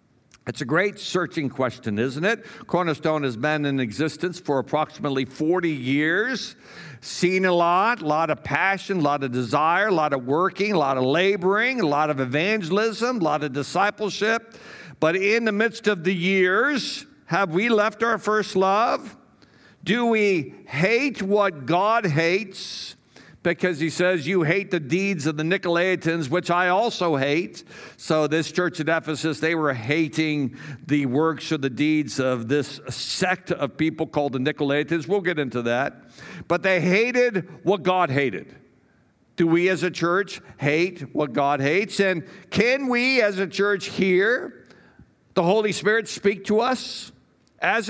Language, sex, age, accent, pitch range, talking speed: English, male, 60-79, American, 150-195 Hz, 165 wpm